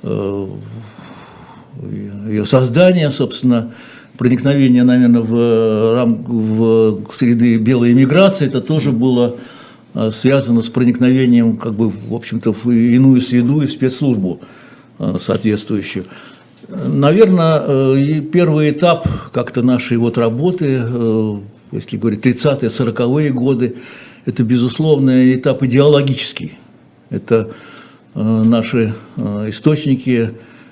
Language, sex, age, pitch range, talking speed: Russian, male, 60-79, 110-135 Hz, 90 wpm